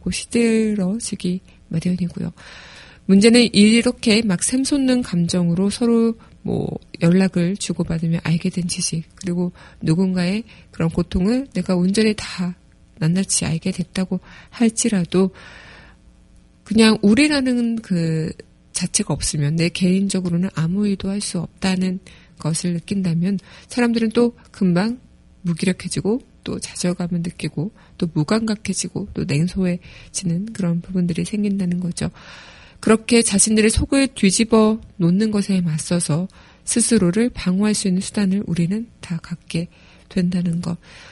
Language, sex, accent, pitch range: Korean, female, native, 175-215 Hz